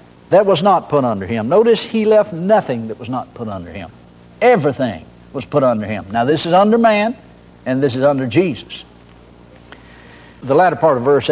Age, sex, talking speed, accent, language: 60-79, male, 190 wpm, American, English